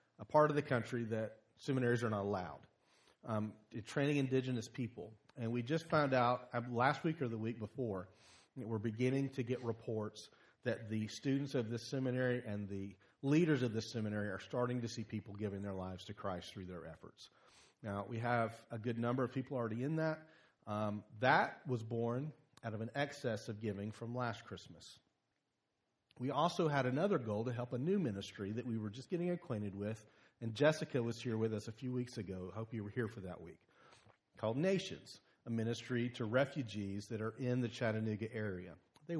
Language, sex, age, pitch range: English, male, 40-59, 110-130 Hz